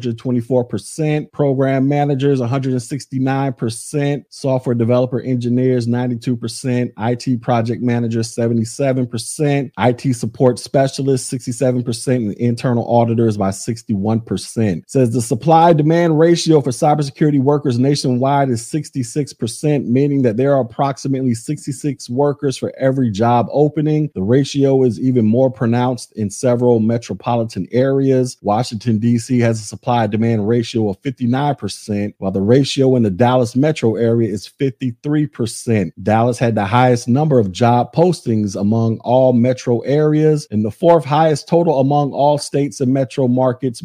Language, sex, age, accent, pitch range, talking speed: English, male, 30-49, American, 115-145 Hz, 130 wpm